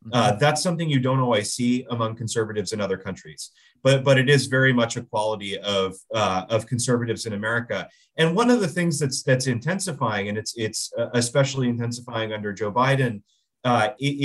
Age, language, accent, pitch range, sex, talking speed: 30-49, English, American, 115-140 Hz, male, 175 wpm